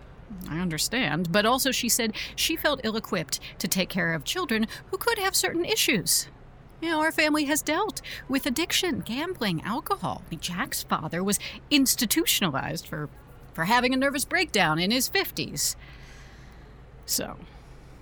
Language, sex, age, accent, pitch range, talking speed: English, female, 40-59, American, 170-240 Hz, 145 wpm